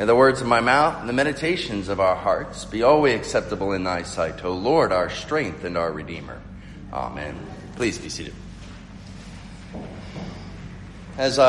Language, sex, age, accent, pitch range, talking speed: English, male, 40-59, American, 95-130 Hz, 155 wpm